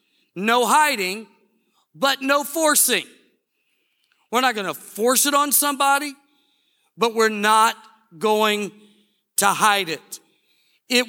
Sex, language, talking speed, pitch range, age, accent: male, English, 115 wpm, 215-275 Hz, 50-69, American